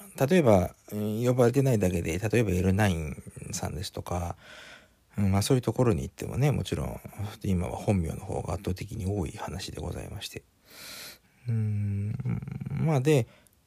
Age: 50-69